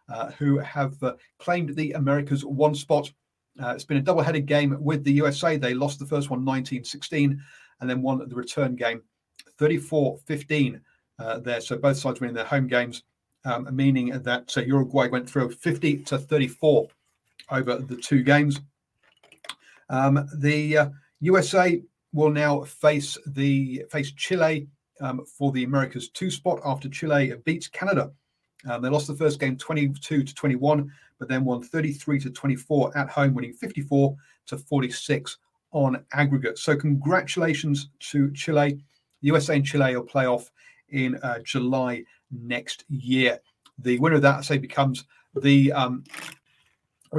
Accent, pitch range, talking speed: British, 130-150 Hz, 150 wpm